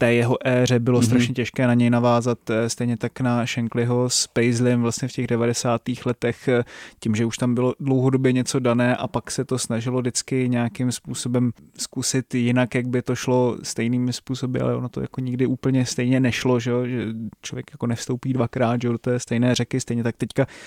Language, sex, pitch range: Czech, male, 115-130 Hz